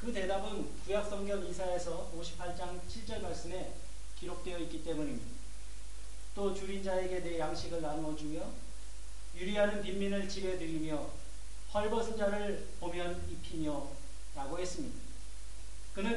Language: Korean